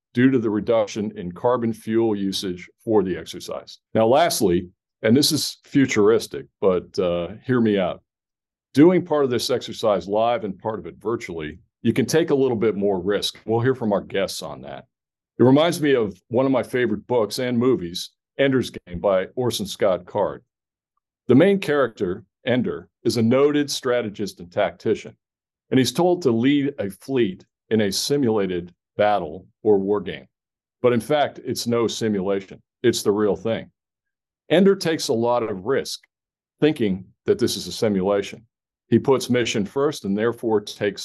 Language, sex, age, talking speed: English, male, 50-69, 175 wpm